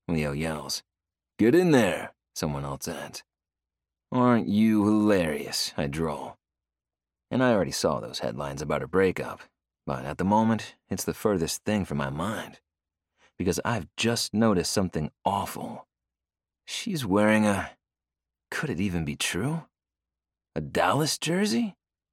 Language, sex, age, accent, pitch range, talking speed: English, male, 30-49, American, 75-110 Hz, 135 wpm